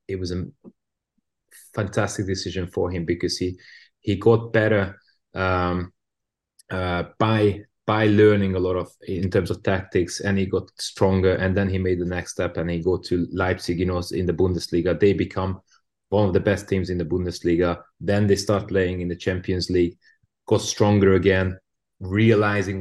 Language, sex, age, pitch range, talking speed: English, male, 30-49, 90-110 Hz, 175 wpm